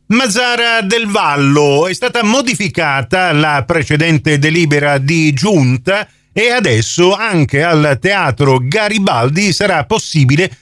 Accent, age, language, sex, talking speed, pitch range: native, 40-59, Italian, male, 105 wpm, 125-180 Hz